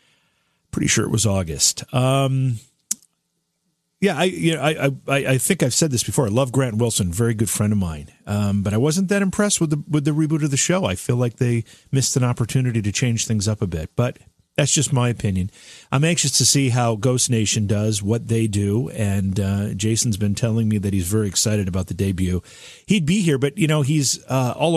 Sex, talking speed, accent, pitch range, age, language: male, 225 wpm, American, 105-145 Hz, 40-59, English